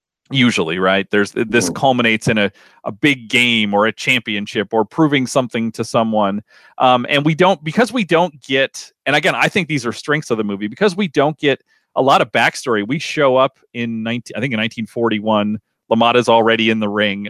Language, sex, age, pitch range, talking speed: English, male, 40-59, 110-155 Hz, 200 wpm